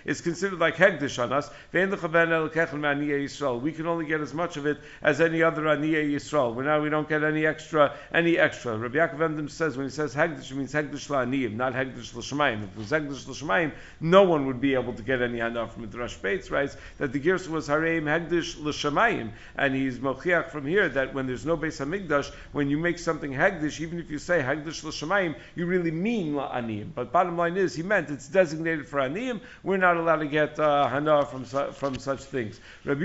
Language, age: English, 50-69